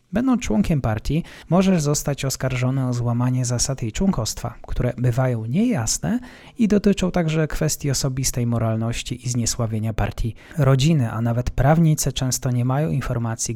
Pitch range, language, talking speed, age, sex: 115-155 Hz, Polish, 135 wpm, 20-39, male